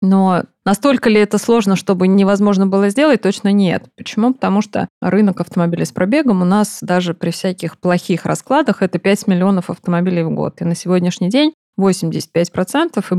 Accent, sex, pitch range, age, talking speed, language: native, female, 180-215 Hz, 20-39, 170 wpm, Russian